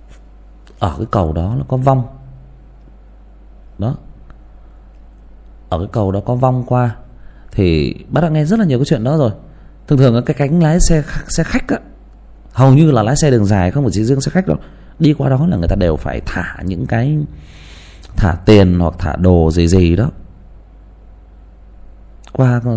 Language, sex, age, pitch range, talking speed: Vietnamese, male, 20-39, 85-125 Hz, 180 wpm